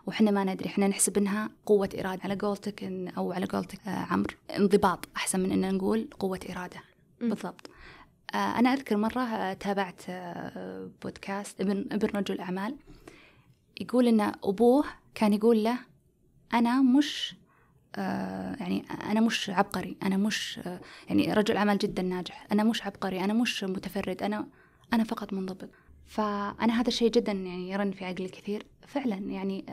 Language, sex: Arabic, female